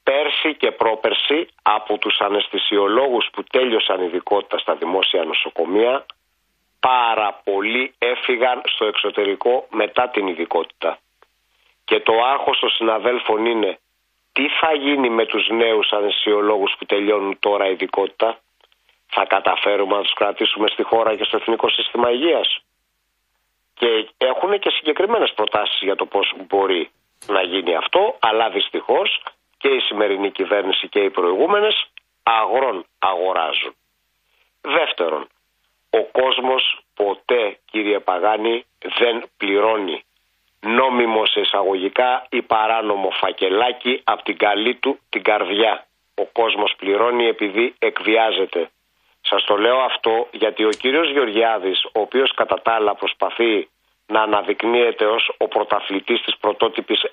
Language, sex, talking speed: Greek, male, 125 wpm